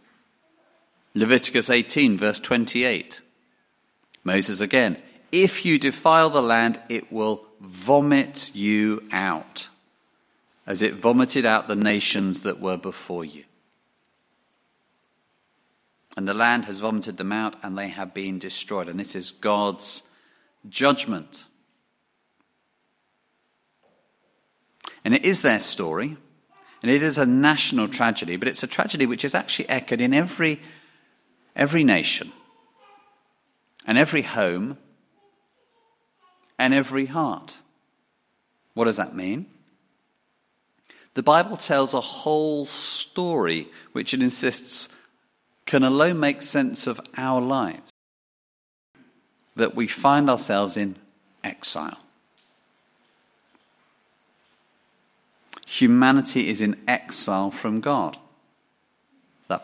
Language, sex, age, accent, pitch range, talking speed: English, male, 40-59, British, 105-155 Hz, 105 wpm